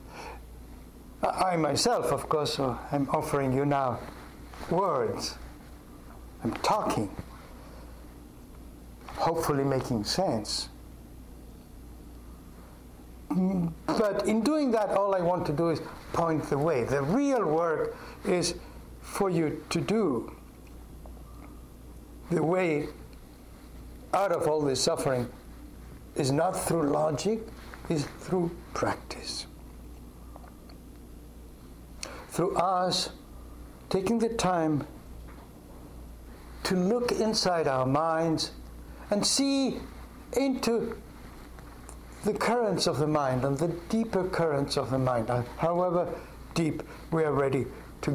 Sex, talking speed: male, 100 wpm